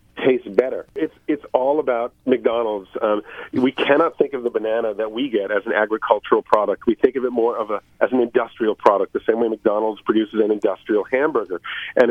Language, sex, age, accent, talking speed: English, male, 40-59, American, 205 wpm